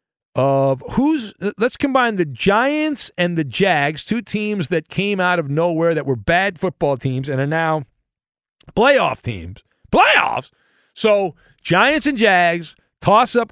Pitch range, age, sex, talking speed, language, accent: 145-205 Hz, 50-69, male, 140 wpm, English, American